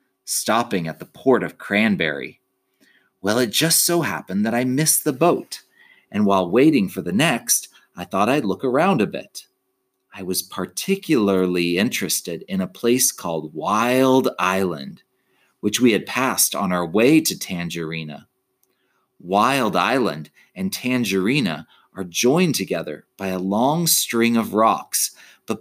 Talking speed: 145 wpm